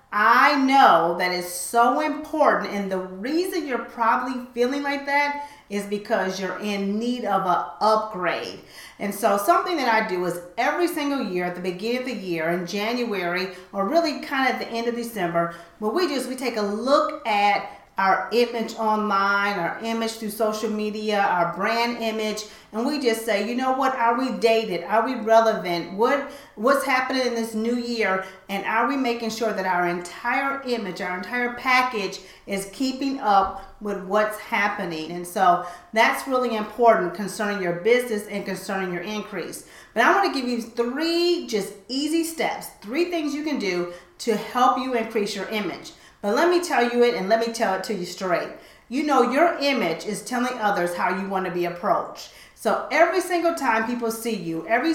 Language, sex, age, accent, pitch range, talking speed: English, female, 40-59, American, 195-255 Hz, 190 wpm